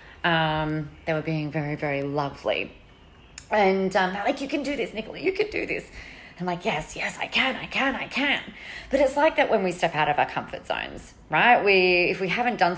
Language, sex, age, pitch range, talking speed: English, female, 30-49, 155-215 Hz, 225 wpm